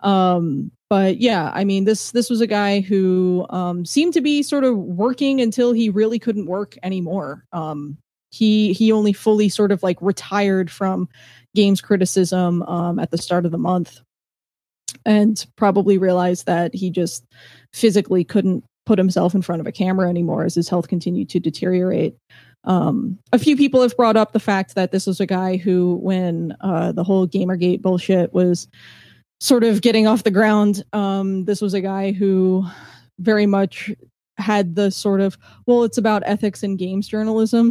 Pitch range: 185-215 Hz